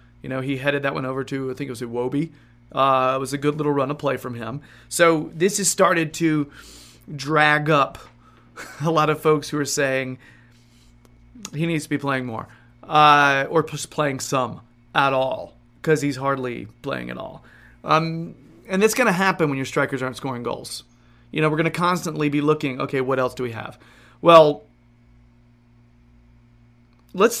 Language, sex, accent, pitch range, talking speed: English, male, American, 120-150 Hz, 185 wpm